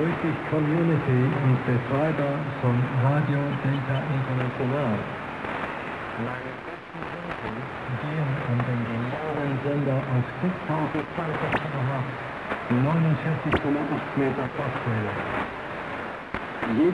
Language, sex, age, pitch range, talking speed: English, male, 60-79, 130-160 Hz, 80 wpm